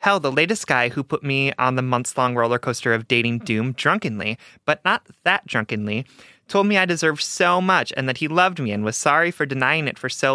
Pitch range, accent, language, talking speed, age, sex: 125-165 Hz, American, English, 225 wpm, 30-49, male